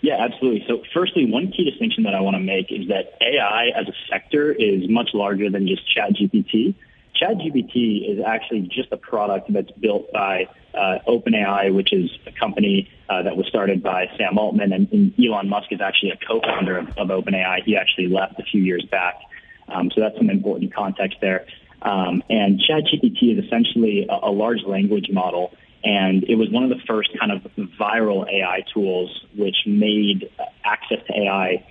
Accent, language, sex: American, English, male